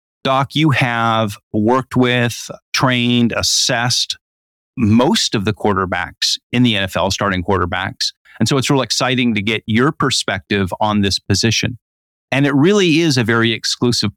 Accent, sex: American, male